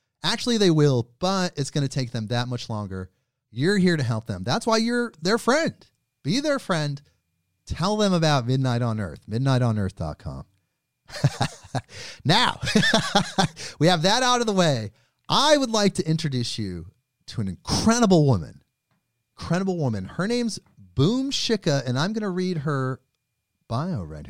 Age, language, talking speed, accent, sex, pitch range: 30-49, English, 160 wpm, American, male, 120-195 Hz